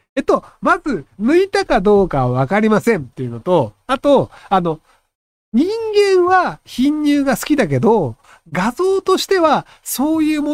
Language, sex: Japanese, male